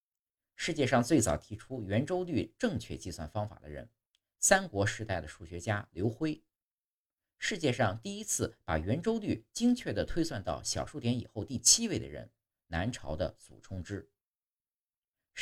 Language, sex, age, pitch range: Chinese, male, 50-69, 85-125 Hz